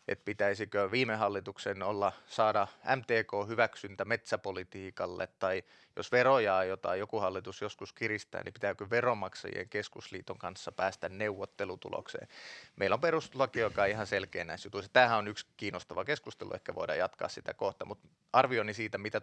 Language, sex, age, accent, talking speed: Finnish, male, 30-49, native, 145 wpm